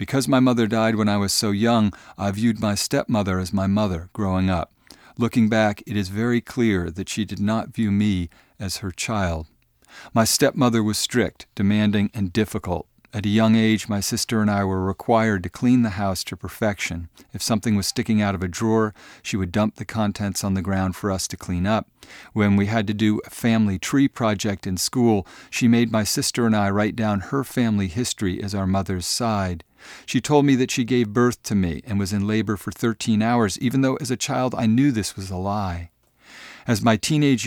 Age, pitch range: 50-69, 95-115 Hz